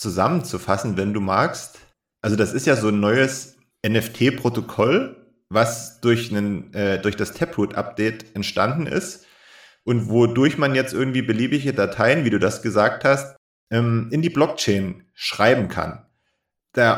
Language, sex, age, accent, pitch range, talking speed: German, male, 30-49, German, 110-135 Hz, 140 wpm